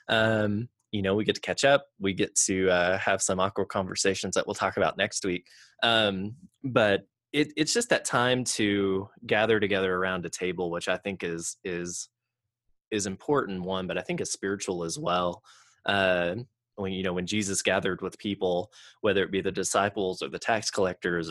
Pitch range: 90-105 Hz